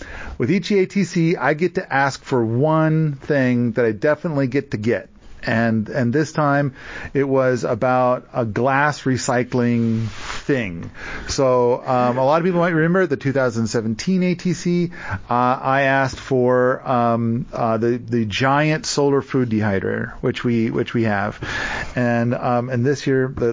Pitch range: 120-150 Hz